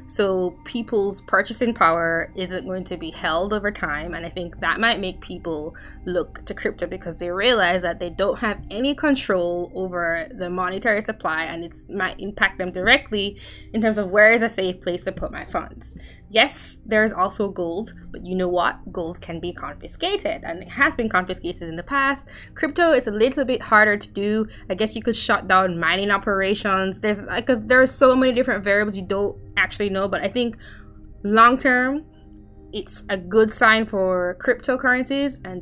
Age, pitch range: 20-39, 180-225 Hz